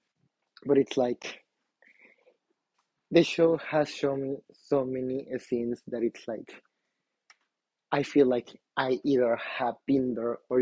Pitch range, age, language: 115-135 Hz, 20-39, English